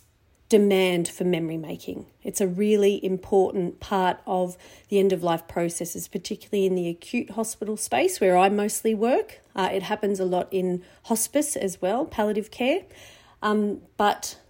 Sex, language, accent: female, English, Australian